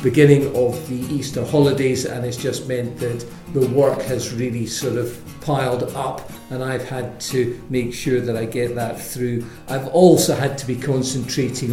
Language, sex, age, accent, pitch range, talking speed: English, male, 50-69, British, 120-135 Hz, 180 wpm